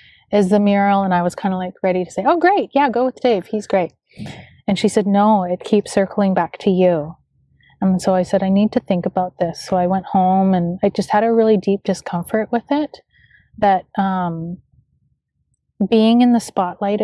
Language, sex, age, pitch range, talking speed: English, female, 30-49, 180-210 Hz, 210 wpm